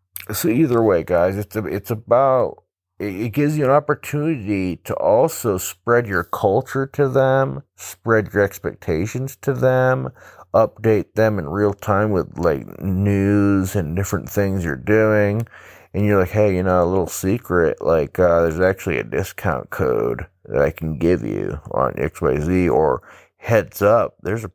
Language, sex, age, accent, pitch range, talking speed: English, male, 30-49, American, 95-125 Hz, 165 wpm